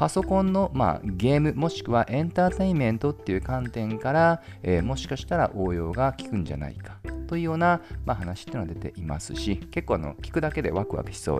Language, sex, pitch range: Japanese, male, 95-155 Hz